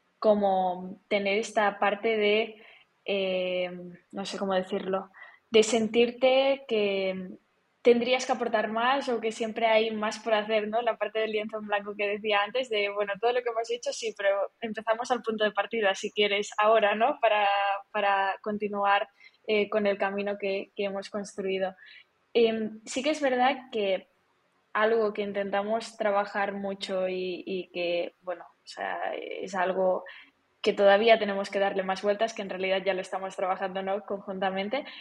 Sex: female